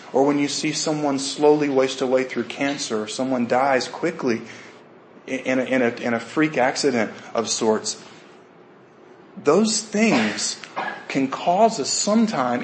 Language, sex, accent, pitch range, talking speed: English, male, American, 125-165 Hz, 130 wpm